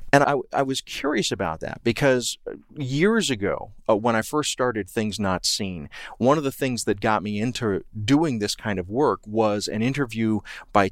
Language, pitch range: English, 100-125 Hz